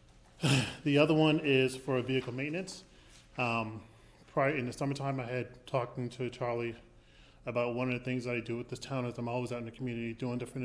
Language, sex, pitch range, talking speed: English, male, 120-135 Hz, 210 wpm